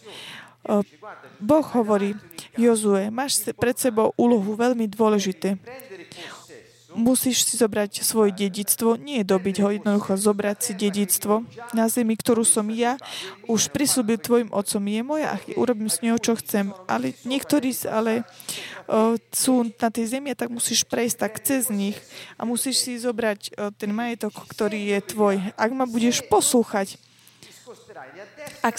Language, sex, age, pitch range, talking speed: Slovak, female, 20-39, 210-245 Hz, 135 wpm